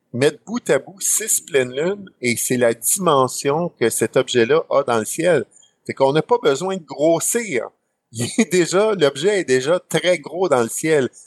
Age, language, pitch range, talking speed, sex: 50-69, French, 120-180 Hz, 190 wpm, male